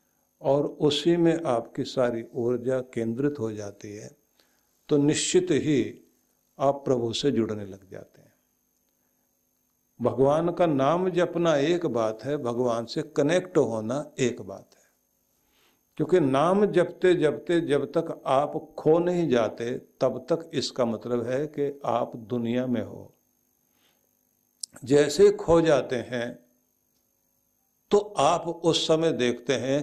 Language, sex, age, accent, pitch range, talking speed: Hindi, male, 50-69, native, 115-150 Hz, 130 wpm